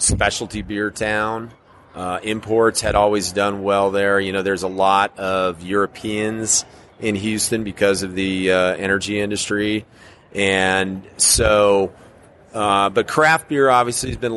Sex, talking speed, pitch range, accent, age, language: male, 140 wpm, 95-110 Hz, American, 30-49, English